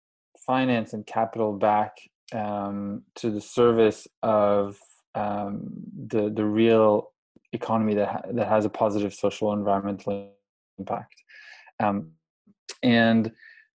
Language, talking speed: English, 110 wpm